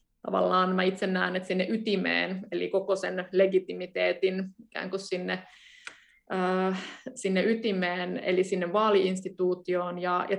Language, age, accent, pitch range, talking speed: Finnish, 20-39, native, 185-220 Hz, 125 wpm